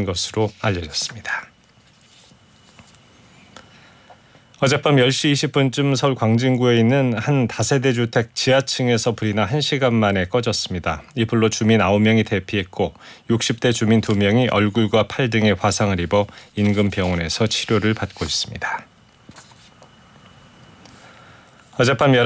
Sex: male